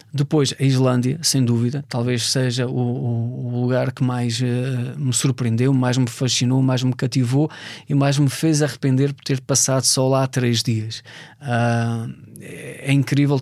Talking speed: 160 wpm